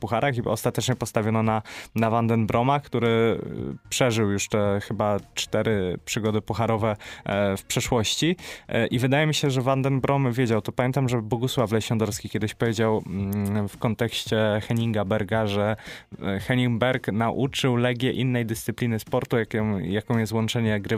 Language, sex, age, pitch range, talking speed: Polish, male, 20-39, 110-120 Hz, 135 wpm